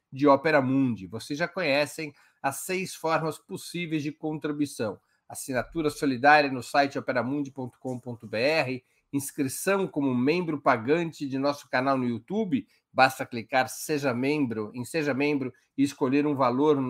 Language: Portuguese